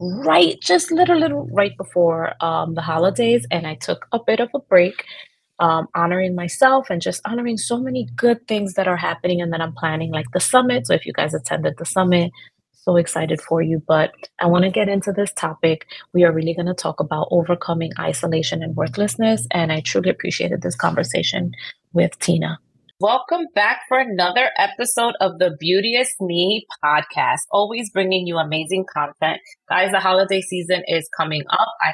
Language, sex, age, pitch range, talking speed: English, female, 30-49, 170-215 Hz, 185 wpm